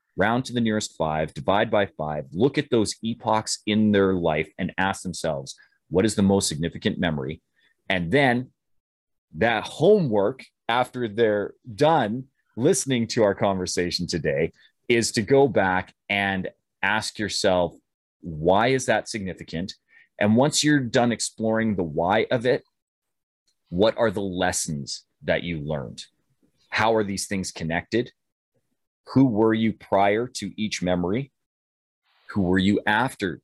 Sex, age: male, 30-49